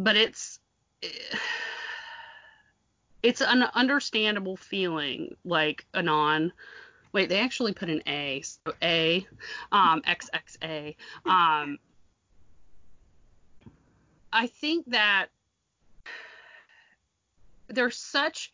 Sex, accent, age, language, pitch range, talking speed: female, American, 30-49, English, 160-235 Hz, 80 wpm